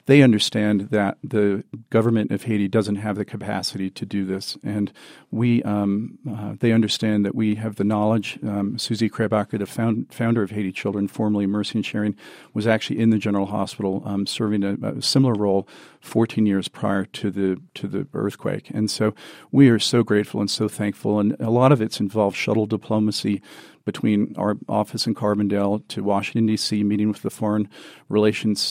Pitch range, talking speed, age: 100-110 Hz, 180 wpm, 40-59